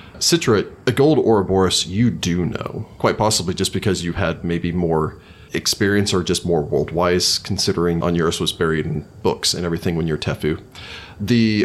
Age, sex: 30-49, male